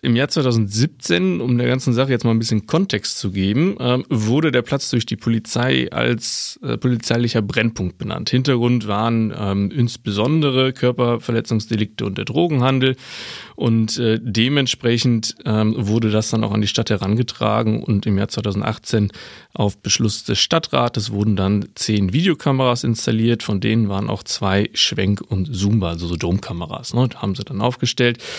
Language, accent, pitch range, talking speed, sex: German, German, 100-125 Hz, 155 wpm, male